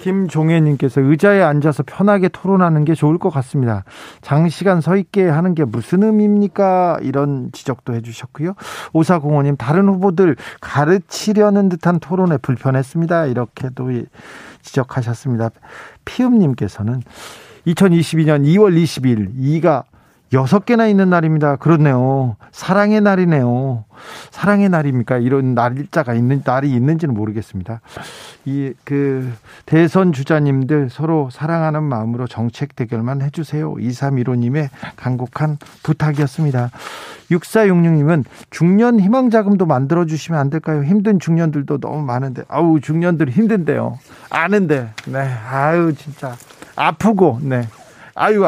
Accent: native